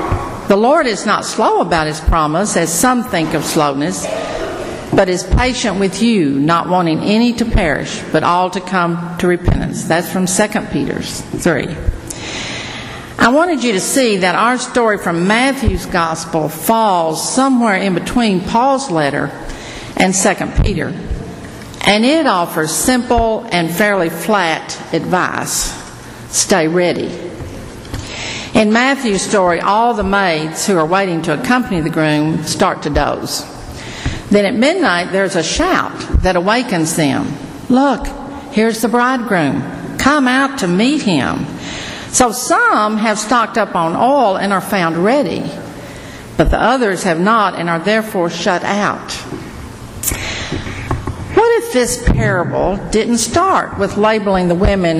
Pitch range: 165-230 Hz